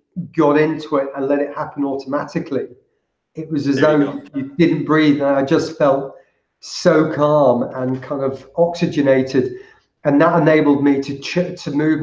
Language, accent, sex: English, British, male